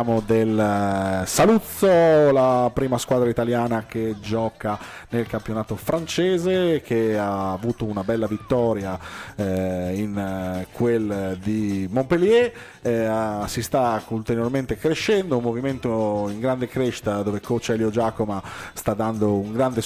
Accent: native